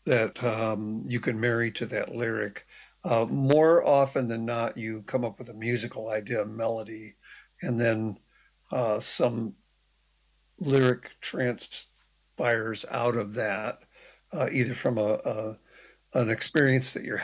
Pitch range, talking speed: 115-130 Hz, 140 wpm